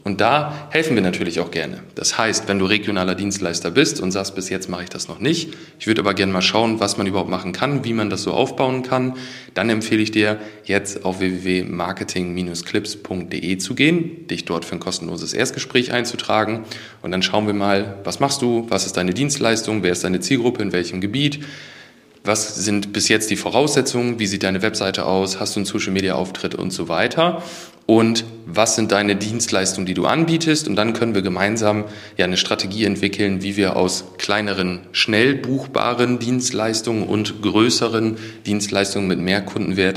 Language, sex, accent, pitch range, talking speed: German, male, German, 95-120 Hz, 185 wpm